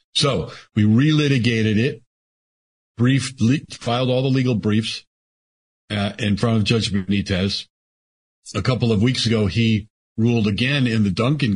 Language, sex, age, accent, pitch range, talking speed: English, male, 50-69, American, 100-120 Hz, 140 wpm